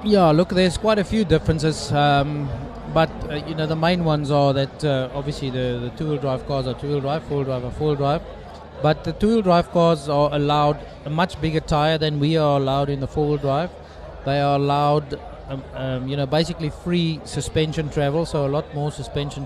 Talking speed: 190 wpm